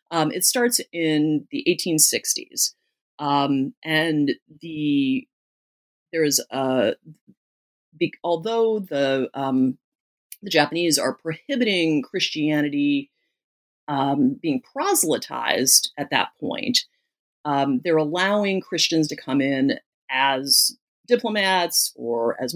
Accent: American